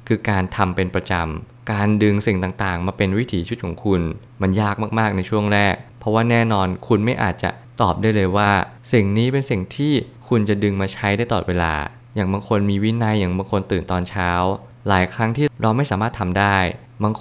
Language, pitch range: Thai, 95-115 Hz